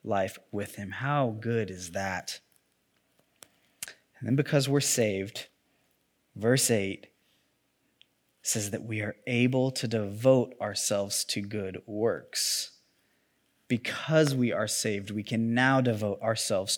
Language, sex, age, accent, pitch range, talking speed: English, male, 20-39, American, 105-130 Hz, 120 wpm